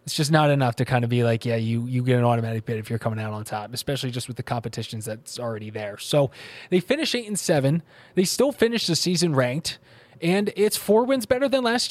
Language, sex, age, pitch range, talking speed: English, male, 20-39, 130-190 Hz, 245 wpm